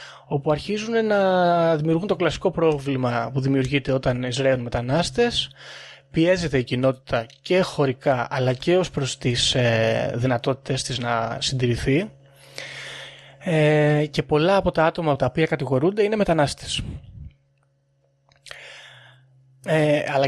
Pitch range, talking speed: 130-160 Hz, 110 wpm